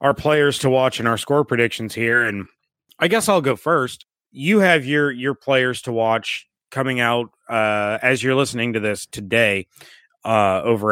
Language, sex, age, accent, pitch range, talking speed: English, male, 30-49, American, 115-150 Hz, 180 wpm